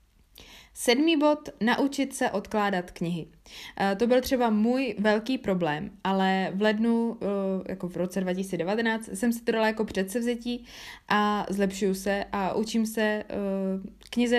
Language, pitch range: Czech, 190-220 Hz